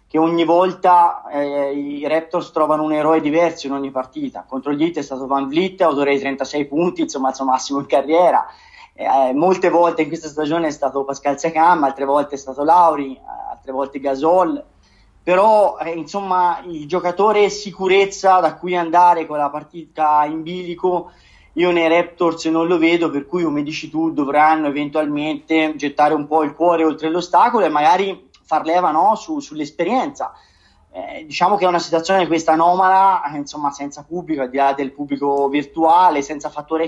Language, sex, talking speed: Italian, male, 175 wpm